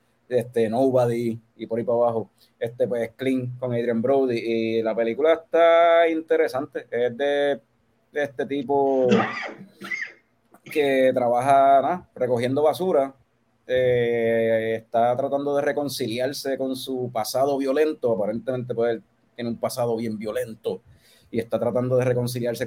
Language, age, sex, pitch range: Spanish, 30-49, male, 115-135 Hz